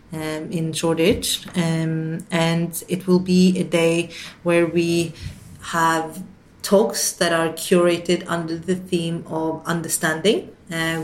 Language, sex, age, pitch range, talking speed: English, female, 30-49, 160-175 Hz, 125 wpm